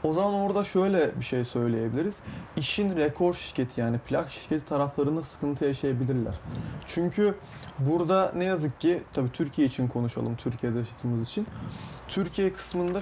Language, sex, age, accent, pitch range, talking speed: Turkish, male, 30-49, native, 120-175 Hz, 140 wpm